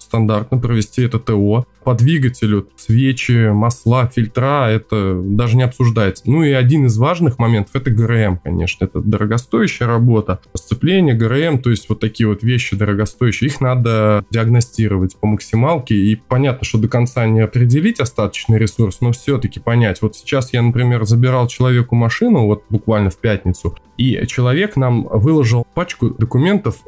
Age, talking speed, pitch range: 20-39, 150 wpm, 105-130 Hz